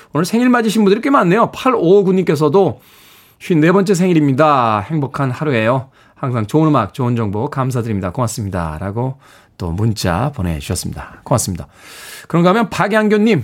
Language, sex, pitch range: Korean, male, 115-160 Hz